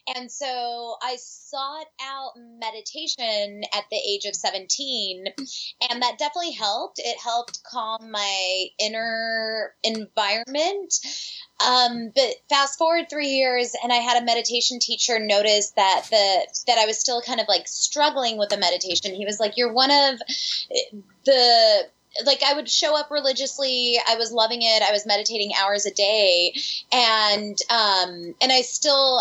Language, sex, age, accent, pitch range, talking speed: English, female, 20-39, American, 205-270 Hz, 150 wpm